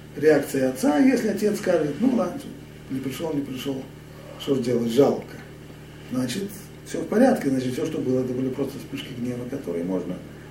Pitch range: 120-160 Hz